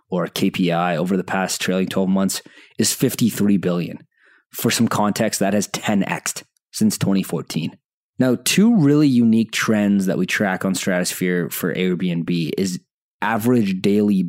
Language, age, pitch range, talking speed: English, 20-39, 95-125 Hz, 145 wpm